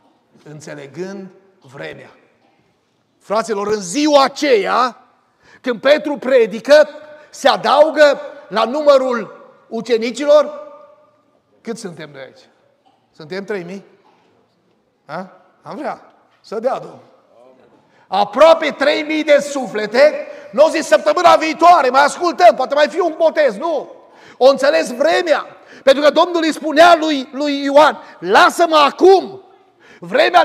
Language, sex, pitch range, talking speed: Romanian, male, 260-315 Hz, 110 wpm